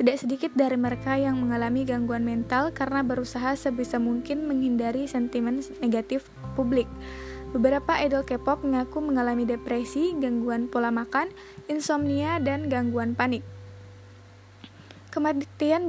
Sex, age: female, 20-39